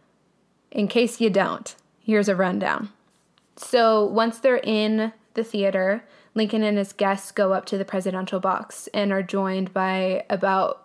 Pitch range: 190-220 Hz